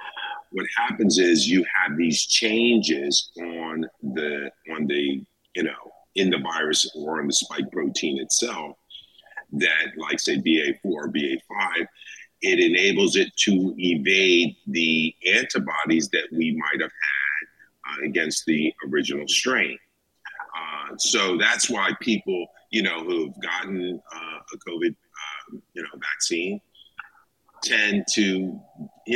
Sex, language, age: male, English, 50-69